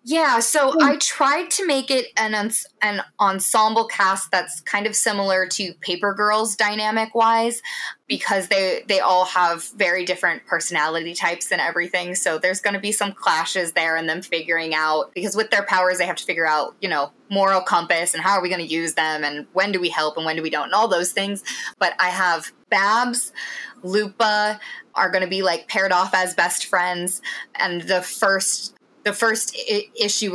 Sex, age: female, 20-39